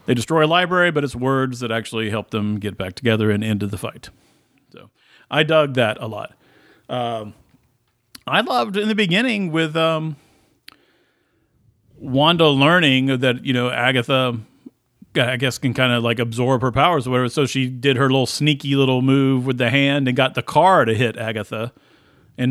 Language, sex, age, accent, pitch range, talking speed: English, male, 40-59, American, 120-140 Hz, 180 wpm